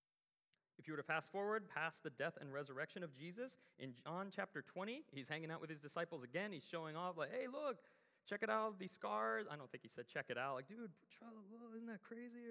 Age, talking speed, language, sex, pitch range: 30-49, 230 wpm, English, male, 140-200 Hz